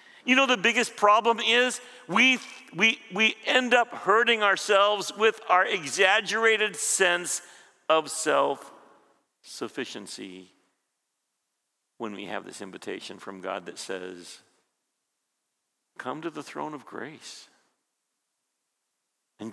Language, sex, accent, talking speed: English, male, American, 110 wpm